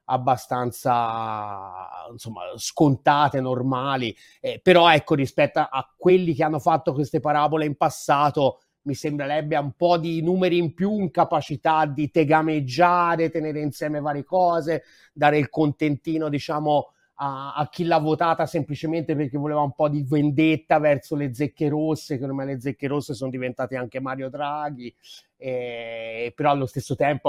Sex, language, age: male, Italian, 30-49